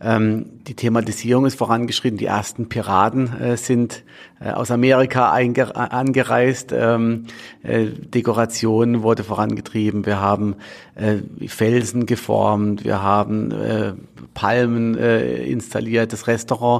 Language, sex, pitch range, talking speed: German, male, 110-125 Hz, 105 wpm